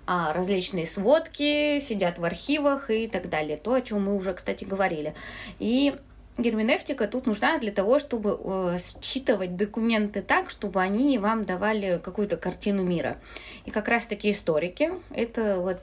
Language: Russian